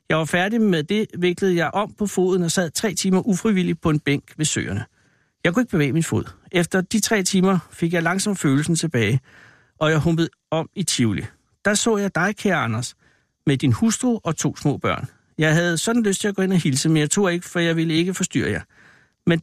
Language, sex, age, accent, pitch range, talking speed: Danish, male, 60-79, native, 140-190 Hz, 230 wpm